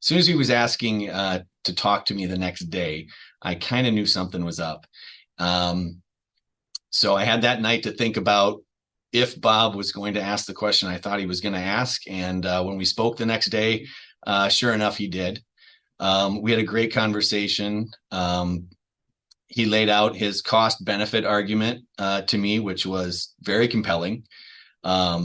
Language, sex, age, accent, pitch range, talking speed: English, male, 30-49, American, 95-110 Hz, 190 wpm